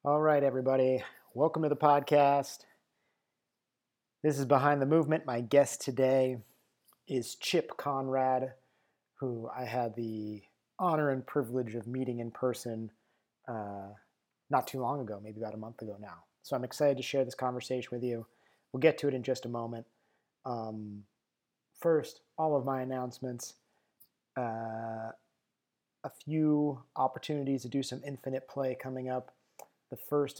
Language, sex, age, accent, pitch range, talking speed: English, male, 30-49, American, 120-135 Hz, 150 wpm